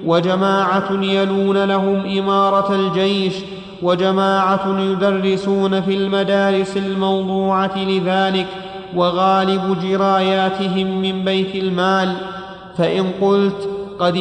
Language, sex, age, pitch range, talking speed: Arabic, male, 30-49, 190-195 Hz, 80 wpm